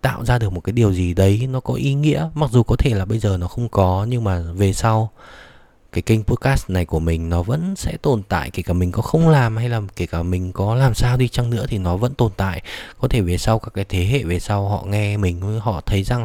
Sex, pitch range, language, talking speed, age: male, 95-125 Hz, Vietnamese, 275 wpm, 20-39